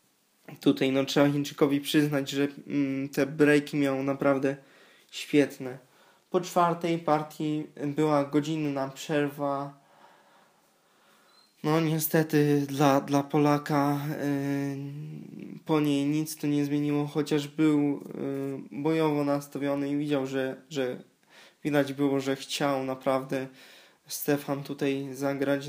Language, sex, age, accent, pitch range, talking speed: Polish, male, 20-39, native, 140-150 Hz, 110 wpm